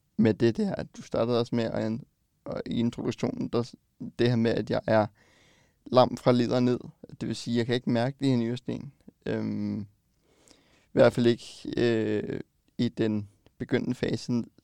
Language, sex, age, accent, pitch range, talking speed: Danish, male, 20-39, native, 110-125 Hz, 175 wpm